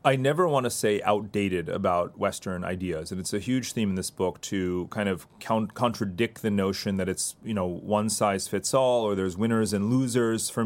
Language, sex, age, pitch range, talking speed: English, male, 30-49, 105-125 Hz, 210 wpm